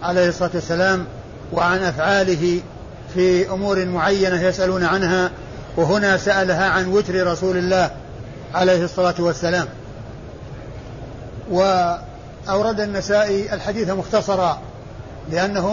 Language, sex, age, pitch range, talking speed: Arabic, male, 50-69, 170-200 Hz, 90 wpm